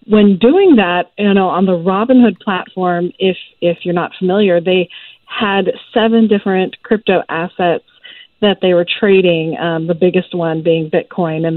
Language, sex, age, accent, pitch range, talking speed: English, female, 40-59, American, 175-215 Hz, 160 wpm